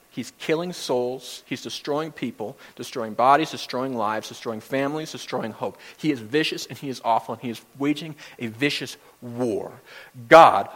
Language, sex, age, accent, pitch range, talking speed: English, male, 40-59, American, 135-200 Hz, 160 wpm